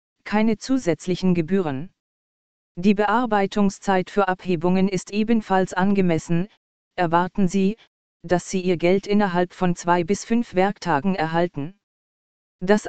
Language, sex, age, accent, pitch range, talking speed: German, female, 20-39, German, 175-205 Hz, 110 wpm